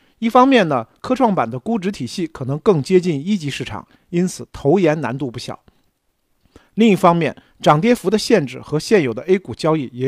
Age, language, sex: 50-69, Chinese, male